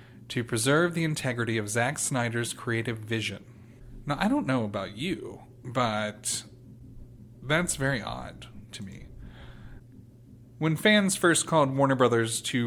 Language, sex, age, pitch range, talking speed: English, male, 30-49, 115-130 Hz, 135 wpm